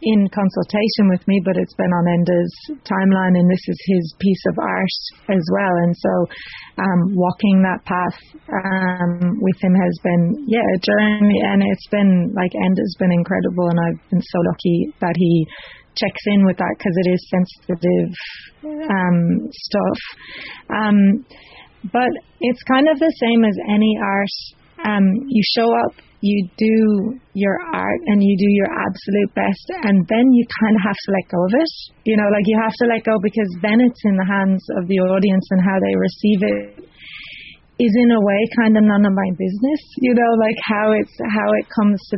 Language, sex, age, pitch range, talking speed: English, female, 30-49, 185-220 Hz, 190 wpm